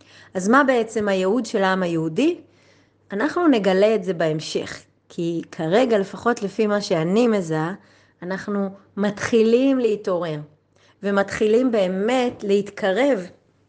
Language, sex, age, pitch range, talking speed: Hebrew, female, 30-49, 185-235 Hz, 110 wpm